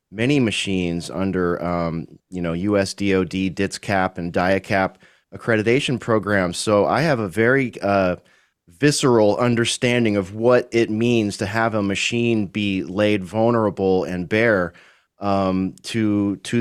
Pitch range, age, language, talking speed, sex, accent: 95-115 Hz, 30-49, English, 135 wpm, male, American